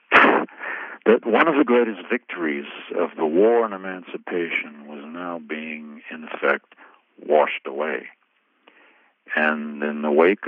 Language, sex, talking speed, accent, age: English, male, 125 wpm, American, 60-79